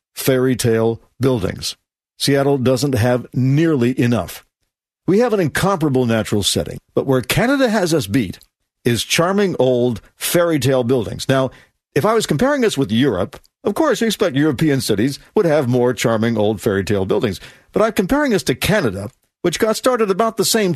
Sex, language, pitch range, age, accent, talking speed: male, English, 125-200 Hz, 50-69, American, 165 wpm